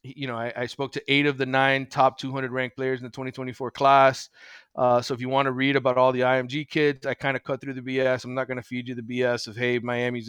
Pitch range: 120-135 Hz